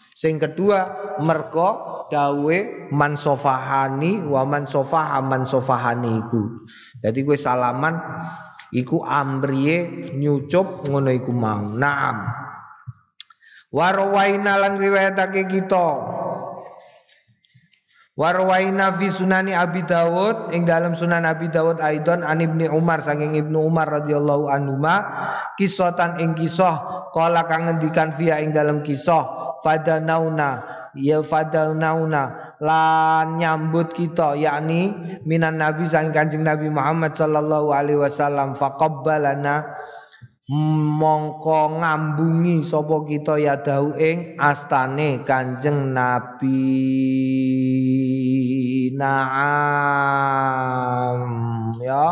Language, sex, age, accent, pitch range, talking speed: Indonesian, male, 30-49, native, 135-165 Hz, 90 wpm